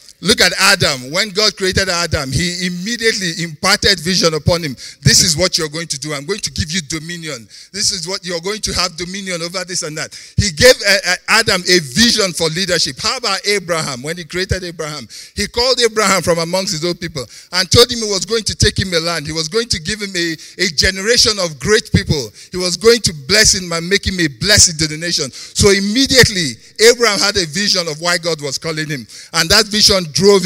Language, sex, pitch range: English, male, 160-200 Hz